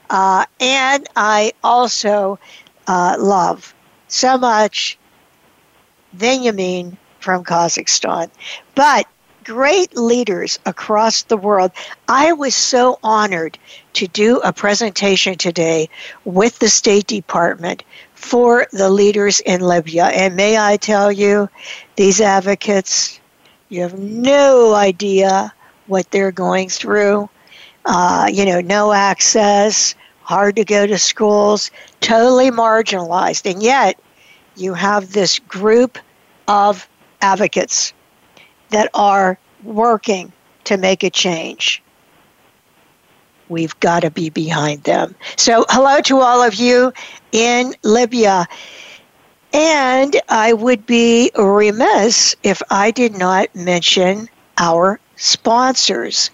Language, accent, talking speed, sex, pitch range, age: English, American, 110 wpm, female, 190-235 Hz, 60-79